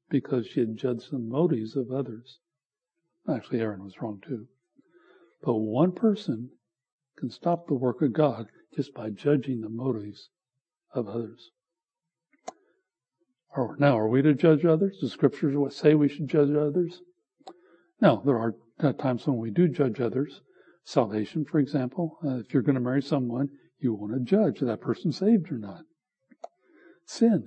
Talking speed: 155 wpm